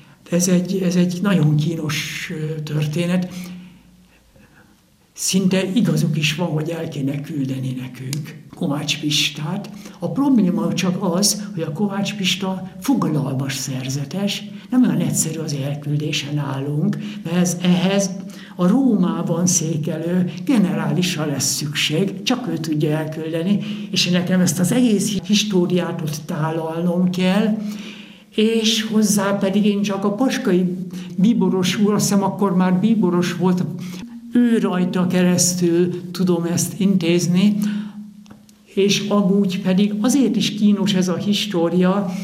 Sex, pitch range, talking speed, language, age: male, 170-200 Hz, 115 wpm, Hungarian, 60-79